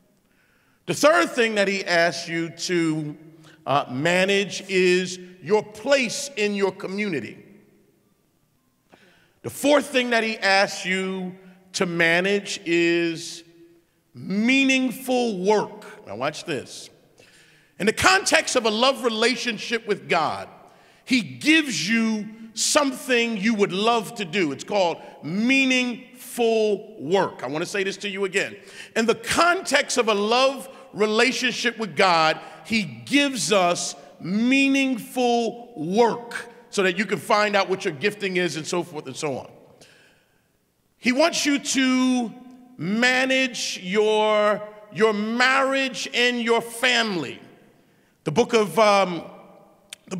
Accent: American